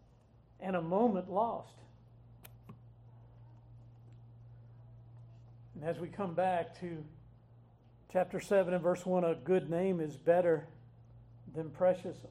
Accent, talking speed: American, 105 wpm